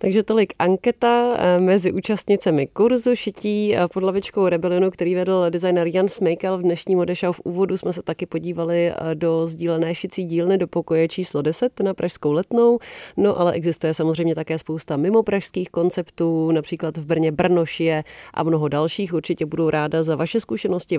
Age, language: 30-49, Czech